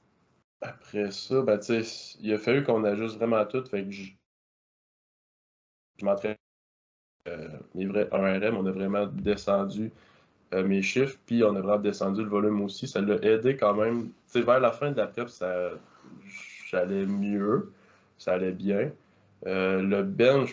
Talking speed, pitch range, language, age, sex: 160 wpm, 100-115 Hz, French, 20-39, male